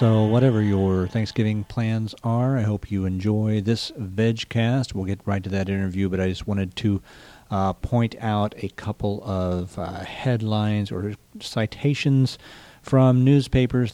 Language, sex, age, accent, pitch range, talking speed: English, male, 40-59, American, 100-130 Hz, 150 wpm